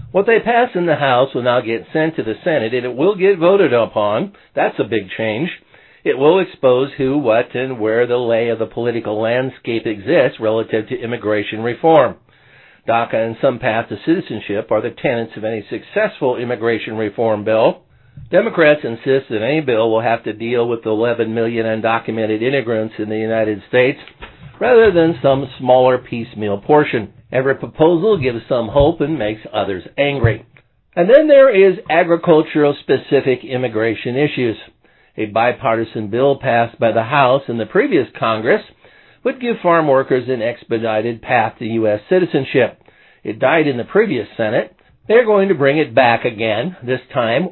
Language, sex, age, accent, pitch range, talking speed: English, male, 60-79, American, 115-150 Hz, 170 wpm